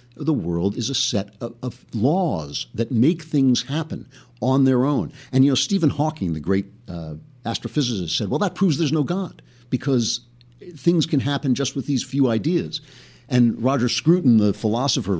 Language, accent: English, American